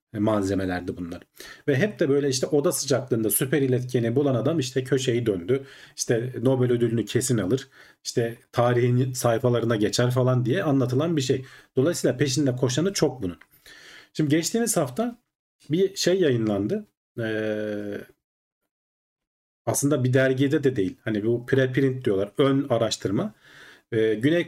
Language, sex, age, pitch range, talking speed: Turkish, male, 40-59, 115-145 Hz, 130 wpm